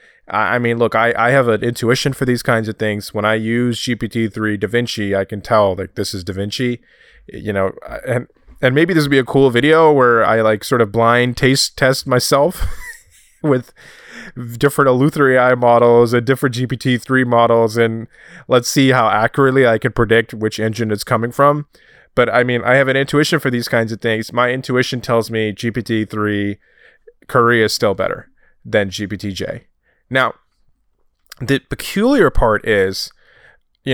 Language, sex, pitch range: English, male, 110-135 Hz